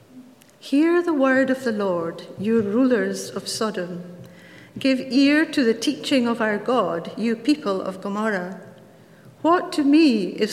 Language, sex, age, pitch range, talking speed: English, female, 50-69, 200-270 Hz, 150 wpm